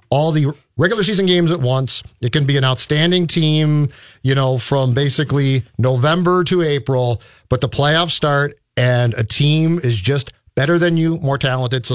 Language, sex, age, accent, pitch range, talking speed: English, male, 40-59, American, 125-155 Hz, 175 wpm